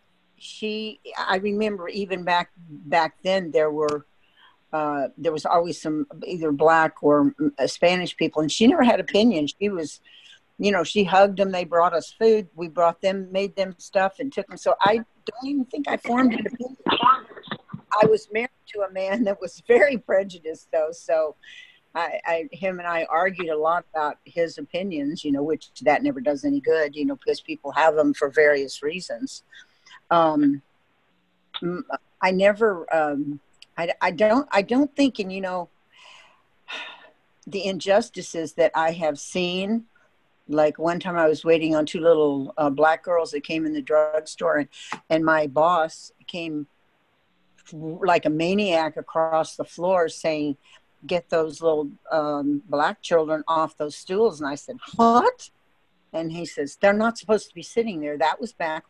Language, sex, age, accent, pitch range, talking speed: English, female, 60-79, American, 155-205 Hz, 170 wpm